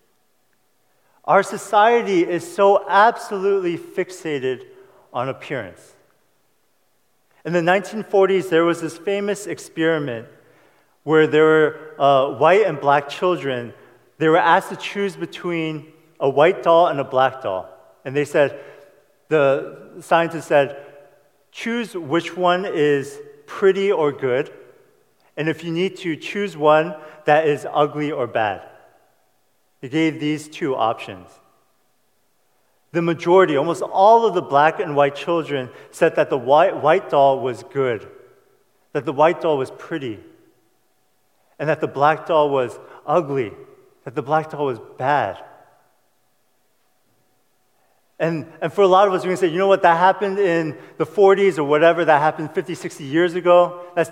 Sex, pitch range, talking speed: male, 150-190 Hz, 145 wpm